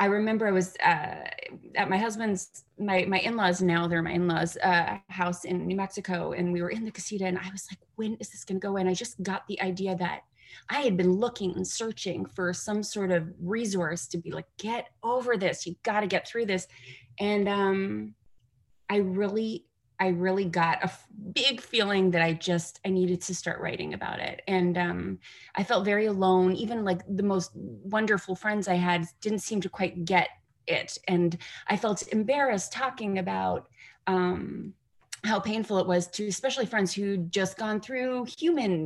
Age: 30-49